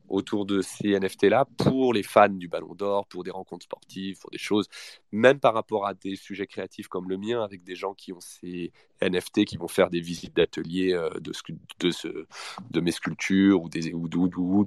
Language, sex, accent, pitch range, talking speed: French, male, French, 95-120 Hz, 215 wpm